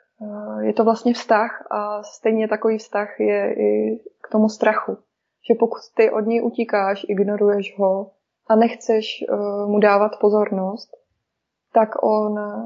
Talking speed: 135 wpm